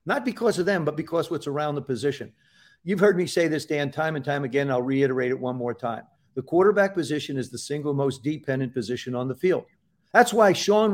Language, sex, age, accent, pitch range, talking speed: English, male, 50-69, American, 145-195 Hz, 225 wpm